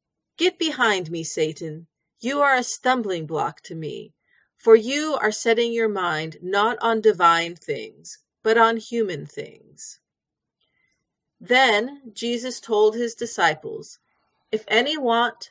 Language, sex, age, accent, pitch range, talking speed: English, female, 40-59, American, 190-255 Hz, 130 wpm